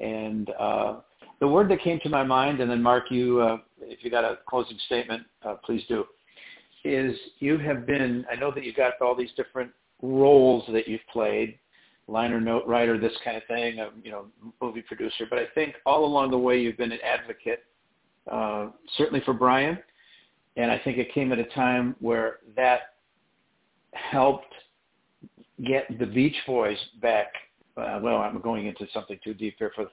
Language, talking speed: English, 185 wpm